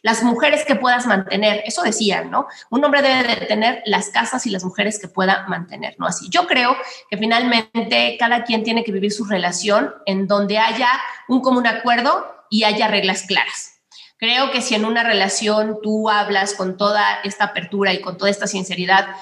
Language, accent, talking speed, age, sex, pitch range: Spanish, Mexican, 190 wpm, 30-49, female, 200-230 Hz